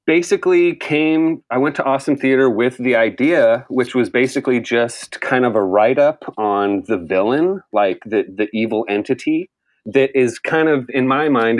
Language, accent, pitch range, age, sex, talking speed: English, American, 115-150 Hz, 30-49, male, 170 wpm